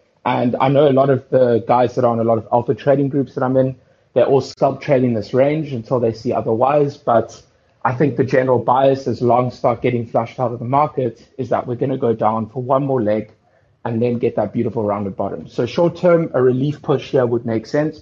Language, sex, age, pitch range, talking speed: English, male, 30-49, 115-135 Hz, 250 wpm